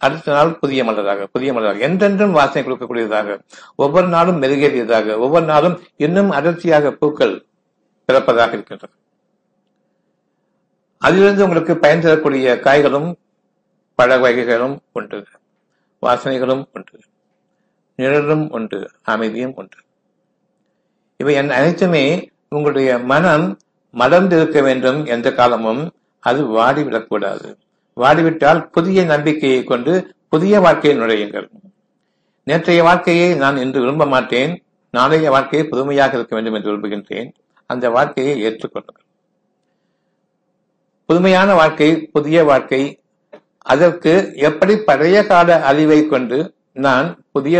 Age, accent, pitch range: 60-79, native, 130-180 Hz